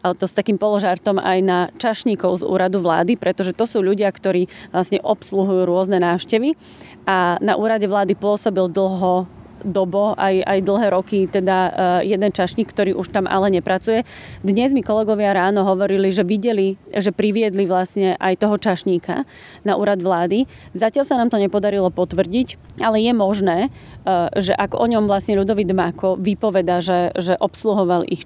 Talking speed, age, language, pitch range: 160 wpm, 30-49, Slovak, 180-210 Hz